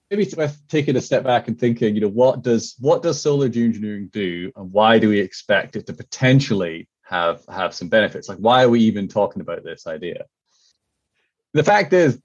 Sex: male